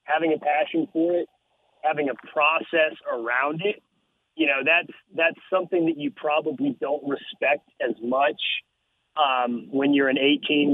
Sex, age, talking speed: male, 30-49, 140 wpm